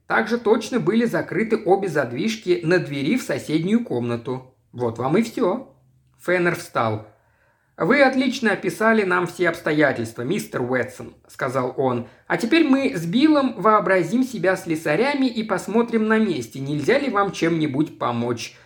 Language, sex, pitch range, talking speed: Russian, male, 140-225 Hz, 140 wpm